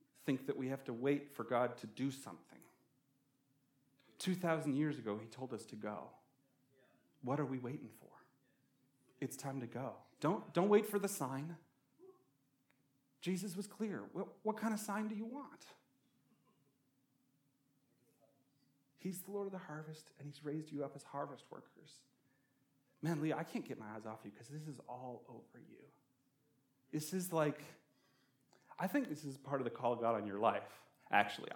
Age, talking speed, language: 40-59, 175 wpm, English